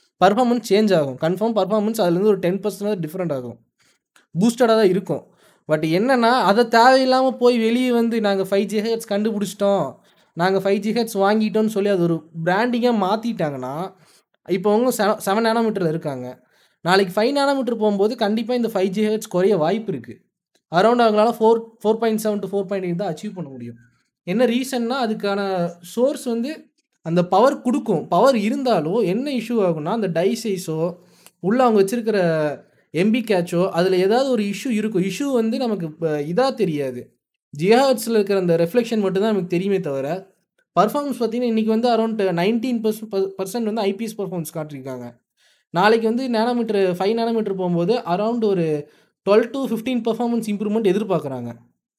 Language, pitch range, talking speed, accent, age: Tamil, 180-230 Hz, 130 wpm, native, 20-39